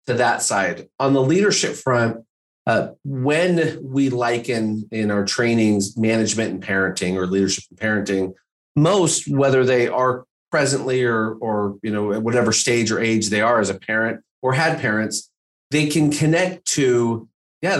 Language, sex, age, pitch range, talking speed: English, male, 30-49, 110-135 Hz, 165 wpm